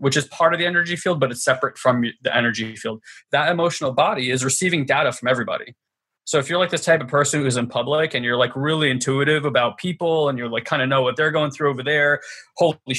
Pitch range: 130-160 Hz